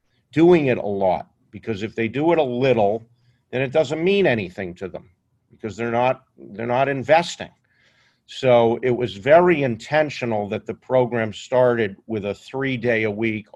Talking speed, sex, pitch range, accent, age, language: 160 wpm, male, 110-130 Hz, American, 50-69, English